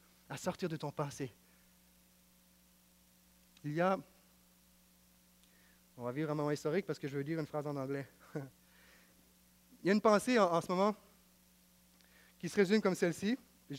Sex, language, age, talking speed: male, French, 30-49, 160 wpm